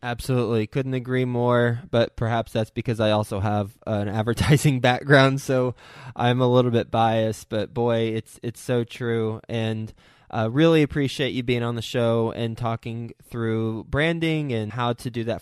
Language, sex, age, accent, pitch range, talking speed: English, male, 20-39, American, 110-125 Hz, 175 wpm